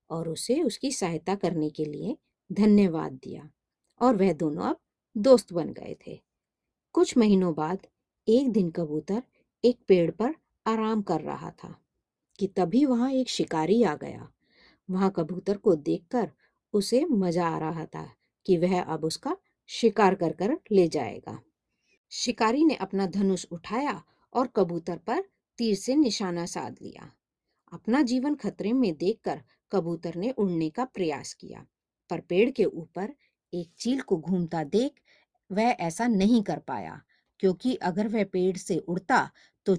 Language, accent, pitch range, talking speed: Hindi, native, 175-250 Hz, 155 wpm